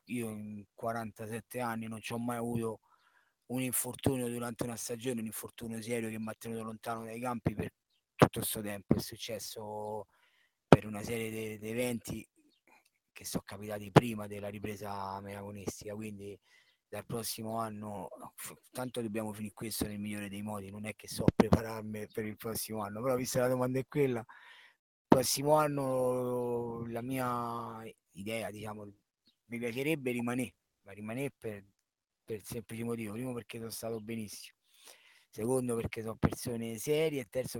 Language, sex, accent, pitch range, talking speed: Italian, male, native, 105-120 Hz, 160 wpm